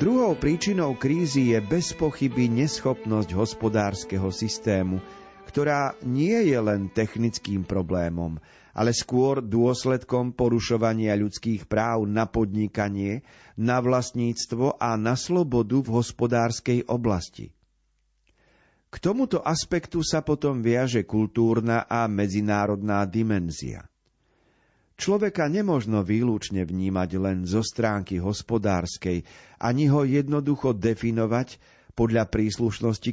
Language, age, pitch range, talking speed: Slovak, 40-59, 105-135 Hz, 100 wpm